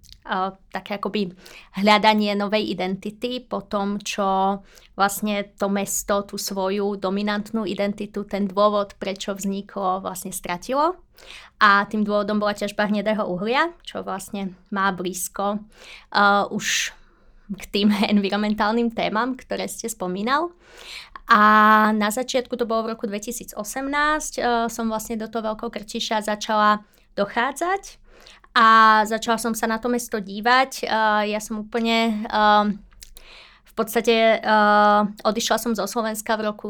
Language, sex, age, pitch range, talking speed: Slovak, female, 20-39, 200-225 Hz, 125 wpm